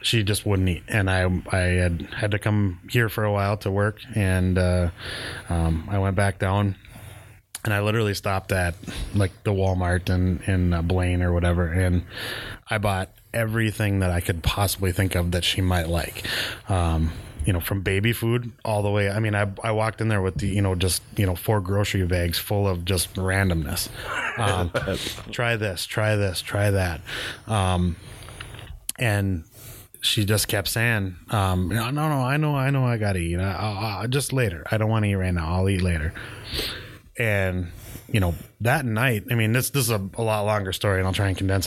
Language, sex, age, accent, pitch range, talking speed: English, male, 20-39, American, 95-110 Hz, 200 wpm